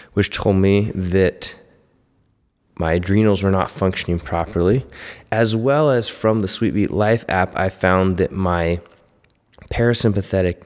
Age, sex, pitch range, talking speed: 20-39, male, 90-105 Hz, 130 wpm